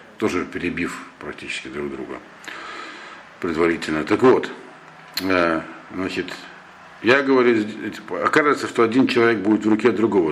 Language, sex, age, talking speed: Russian, male, 50-69, 120 wpm